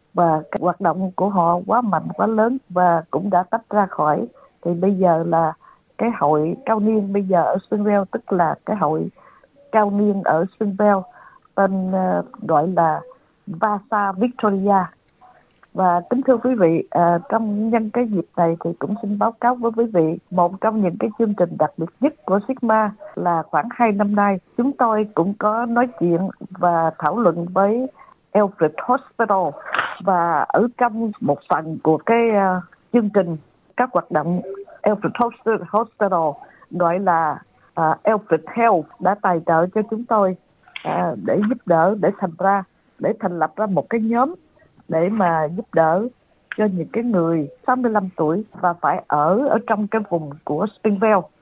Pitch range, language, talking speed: 175-225 Hz, Vietnamese, 170 wpm